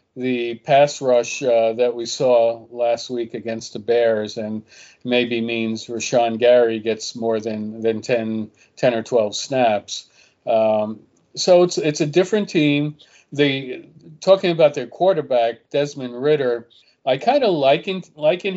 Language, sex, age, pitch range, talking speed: English, male, 50-69, 120-160 Hz, 145 wpm